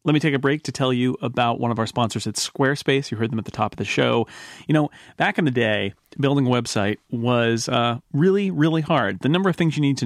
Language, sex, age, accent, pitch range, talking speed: English, male, 40-59, American, 120-150 Hz, 270 wpm